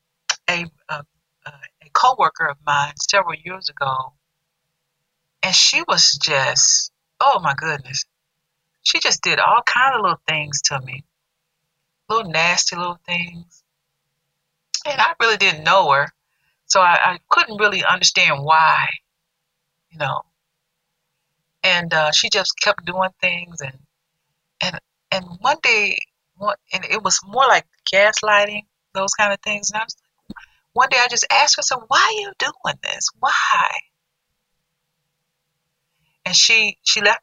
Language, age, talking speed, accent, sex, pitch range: English, 40-59, 145 wpm, American, female, 160-190 Hz